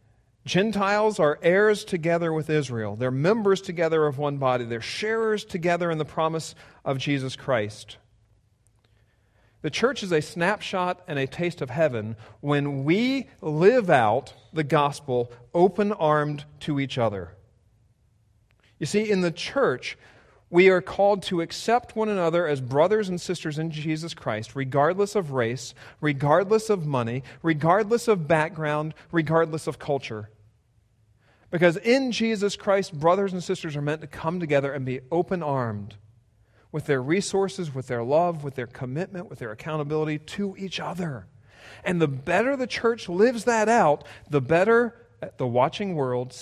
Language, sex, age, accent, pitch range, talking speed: English, male, 40-59, American, 125-180 Hz, 150 wpm